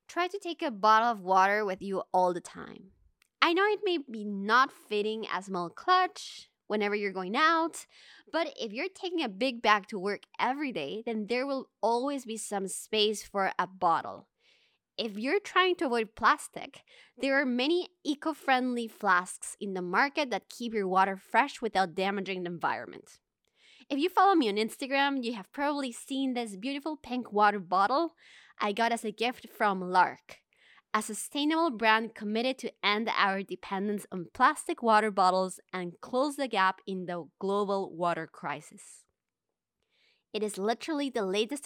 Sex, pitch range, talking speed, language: female, 195-270 Hz, 170 wpm, English